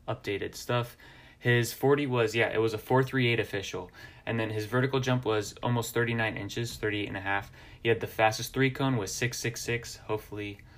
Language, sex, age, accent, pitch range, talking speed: English, male, 20-39, American, 100-120 Hz, 185 wpm